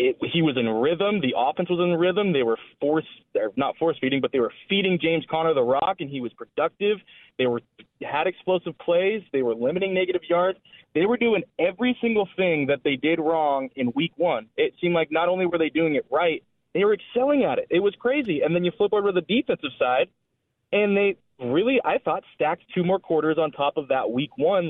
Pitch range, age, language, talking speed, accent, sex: 140-200 Hz, 20-39, English, 225 wpm, American, male